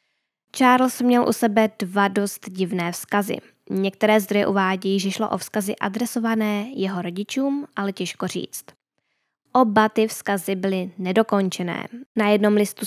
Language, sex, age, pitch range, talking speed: Czech, female, 10-29, 195-230 Hz, 135 wpm